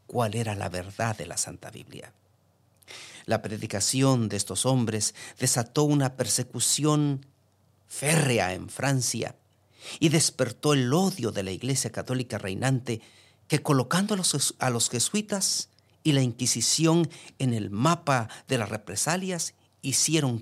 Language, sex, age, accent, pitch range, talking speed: English, male, 50-69, Mexican, 105-135 Hz, 130 wpm